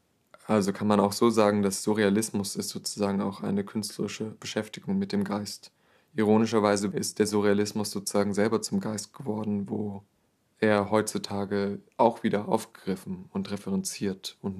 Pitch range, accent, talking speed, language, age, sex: 100-110 Hz, German, 145 wpm, German, 20-39, male